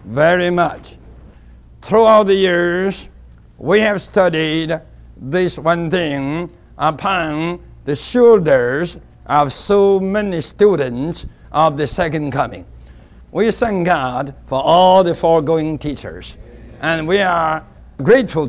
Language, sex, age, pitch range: English, male, 60-79, 140-185 Hz